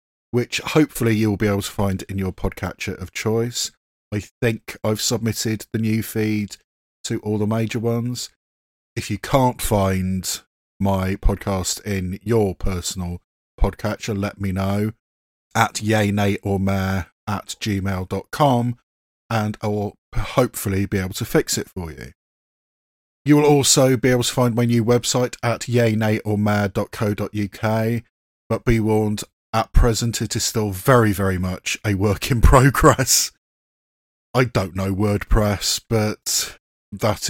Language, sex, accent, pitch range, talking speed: English, male, British, 95-115 Hz, 140 wpm